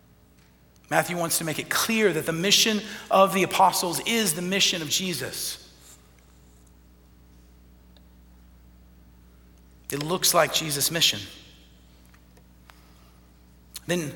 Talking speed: 100 wpm